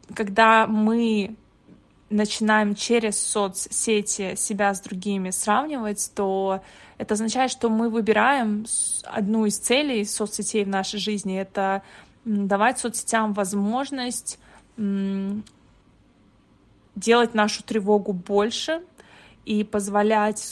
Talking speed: 95 wpm